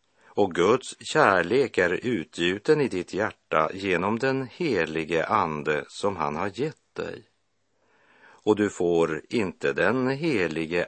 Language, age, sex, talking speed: Swedish, 50-69, male, 125 wpm